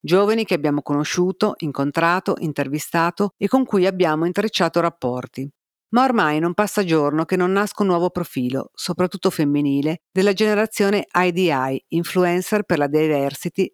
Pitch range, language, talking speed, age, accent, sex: 155-195 Hz, Italian, 140 wpm, 50-69, native, female